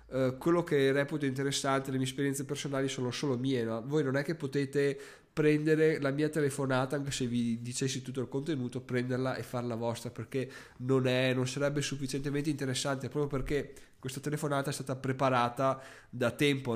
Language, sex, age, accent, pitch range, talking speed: Italian, male, 20-39, native, 125-150 Hz, 175 wpm